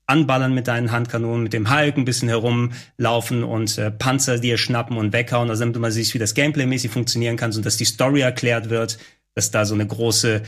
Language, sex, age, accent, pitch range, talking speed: German, male, 30-49, German, 120-150 Hz, 210 wpm